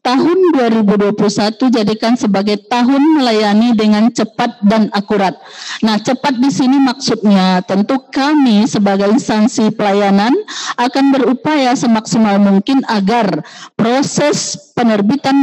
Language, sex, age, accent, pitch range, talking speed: Indonesian, female, 50-69, native, 215-265 Hz, 105 wpm